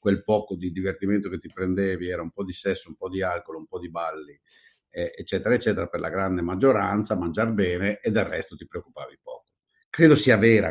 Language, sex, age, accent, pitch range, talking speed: Italian, male, 50-69, native, 95-120 Hz, 215 wpm